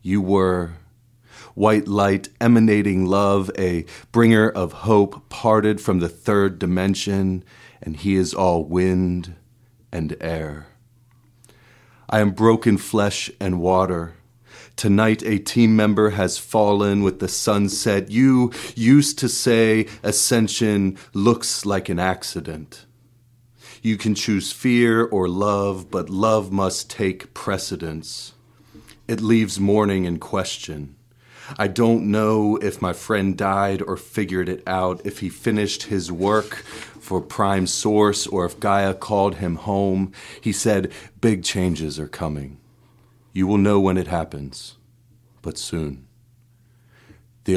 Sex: male